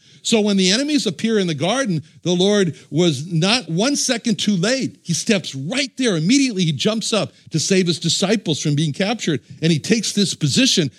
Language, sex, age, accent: English, male, 60-79, American